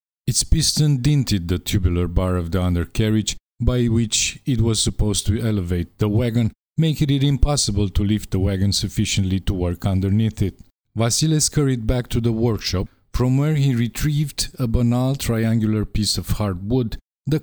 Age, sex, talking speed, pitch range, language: 50-69, male, 165 wpm, 95-130 Hz, English